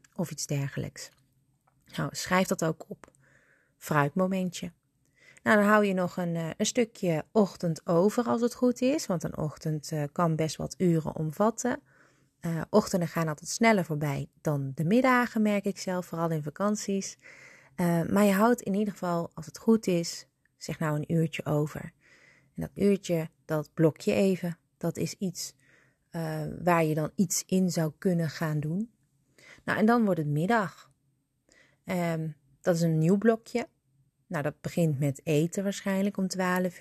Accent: Dutch